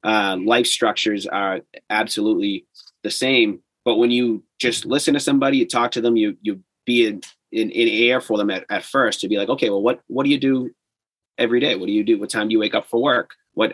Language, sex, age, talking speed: English, male, 30-49, 240 wpm